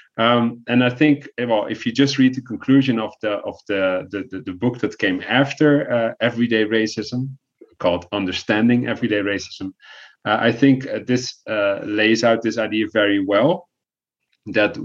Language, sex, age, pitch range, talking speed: English, male, 30-49, 100-125 Hz, 165 wpm